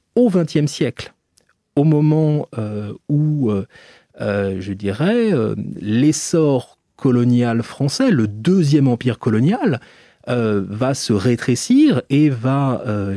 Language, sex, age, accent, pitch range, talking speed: French, male, 30-49, French, 105-150 Hz, 115 wpm